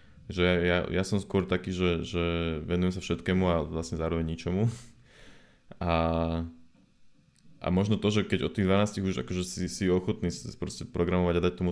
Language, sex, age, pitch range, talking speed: Slovak, male, 20-39, 85-105 Hz, 175 wpm